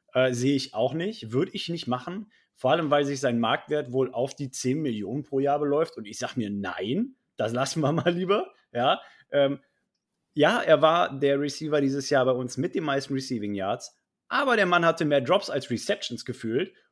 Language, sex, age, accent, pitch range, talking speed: German, male, 30-49, German, 130-160 Hz, 205 wpm